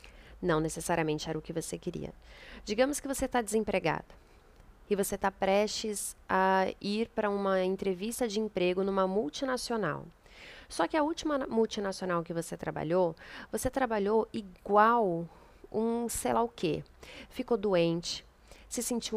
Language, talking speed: Portuguese, 140 wpm